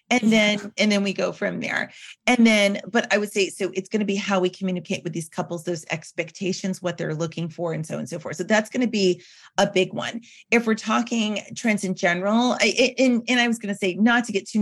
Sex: female